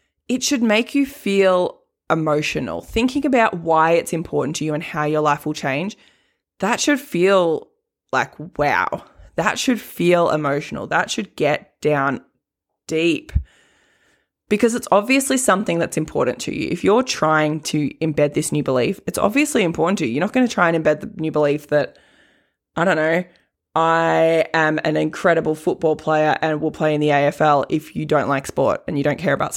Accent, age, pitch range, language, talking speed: Australian, 20-39, 155-210 Hz, English, 185 wpm